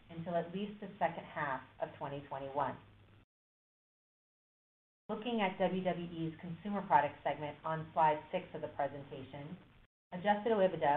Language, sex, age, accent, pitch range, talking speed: English, female, 30-49, American, 150-185 Hz, 120 wpm